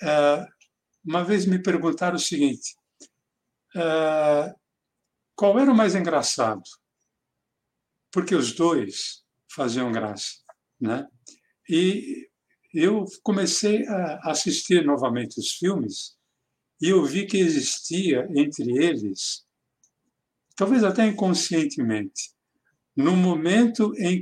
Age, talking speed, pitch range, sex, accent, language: 60-79, 95 wpm, 145-200 Hz, male, Brazilian, Portuguese